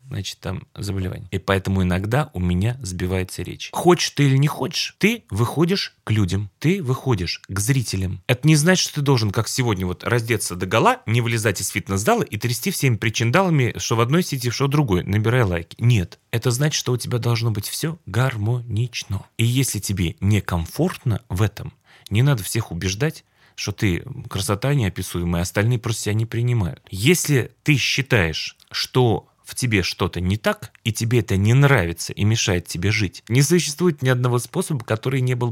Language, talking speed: Russian, 180 wpm